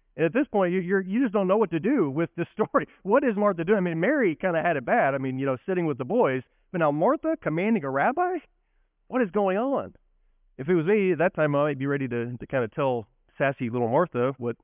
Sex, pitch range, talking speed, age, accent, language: male, 115-165 Hz, 260 wpm, 30-49, American, English